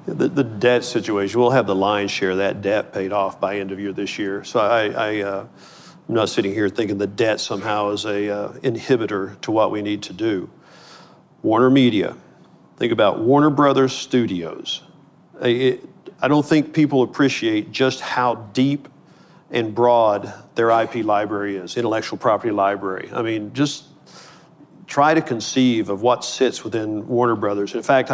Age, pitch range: 50-69, 110-140 Hz